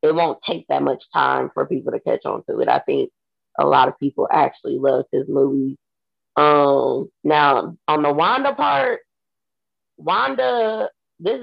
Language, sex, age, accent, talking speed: English, female, 20-39, American, 165 wpm